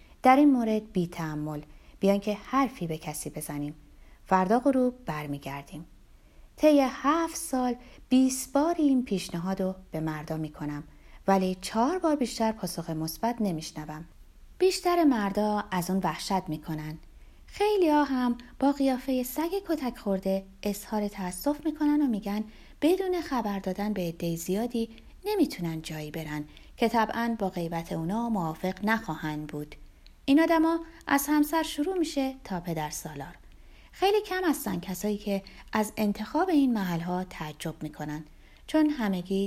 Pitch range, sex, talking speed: 170-265 Hz, female, 135 wpm